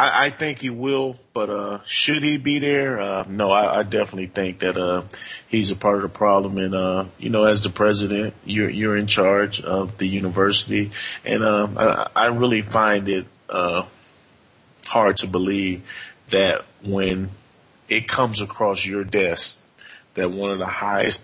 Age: 30-49